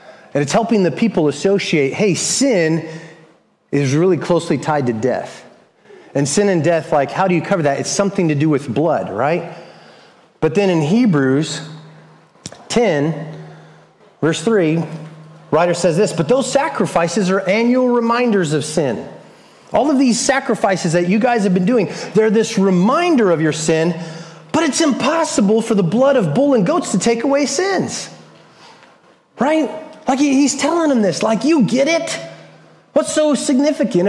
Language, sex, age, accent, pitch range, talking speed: English, male, 30-49, American, 160-245 Hz, 160 wpm